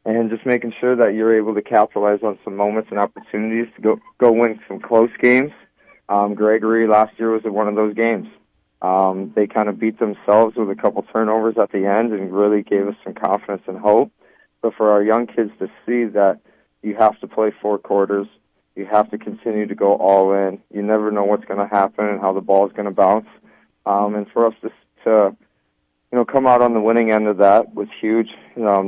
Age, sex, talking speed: 20-39, male, 225 wpm